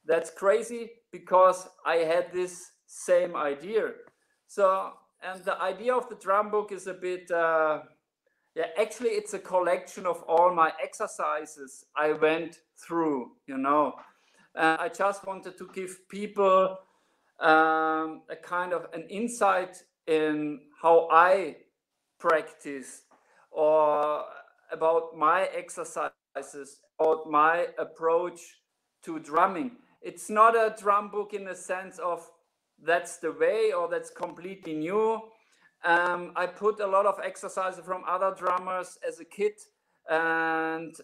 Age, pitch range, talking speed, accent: 50-69, 160-210 Hz, 130 wpm, German